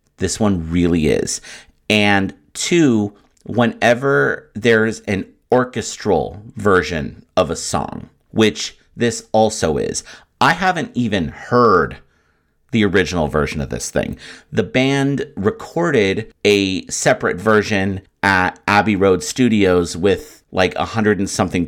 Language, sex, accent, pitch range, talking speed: English, male, American, 80-110 Hz, 120 wpm